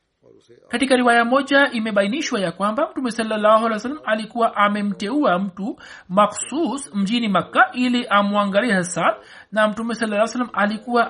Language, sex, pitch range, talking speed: Swahili, male, 195-245 Hz, 130 wpm